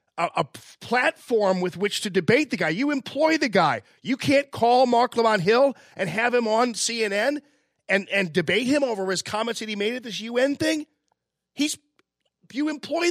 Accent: American